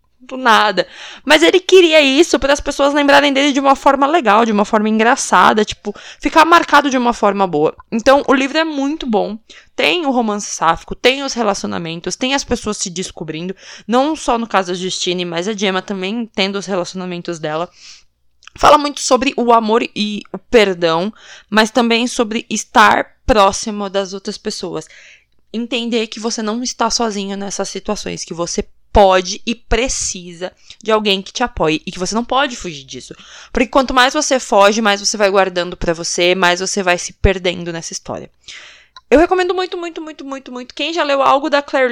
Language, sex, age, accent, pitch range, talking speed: Portuguese, female, 20-39, Brazilian, 185-265 Hz, 185 wpm